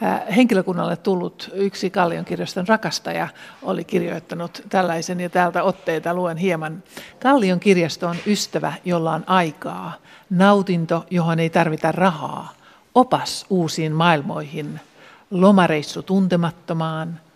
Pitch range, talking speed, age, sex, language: 165-195 Hz, 105 wpm, 60-79, male, Finnish